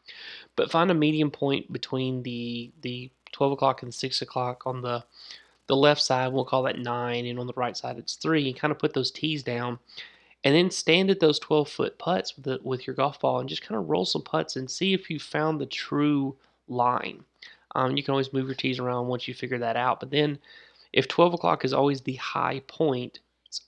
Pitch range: 125-140 Hz